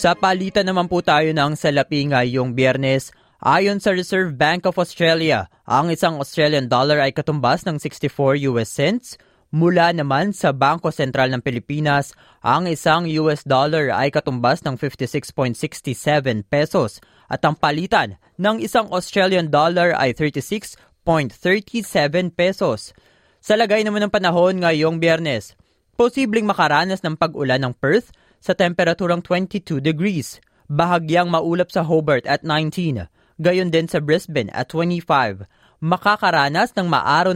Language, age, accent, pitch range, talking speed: Filipino, 20-39, native, 140-185 Hz, 135 wpm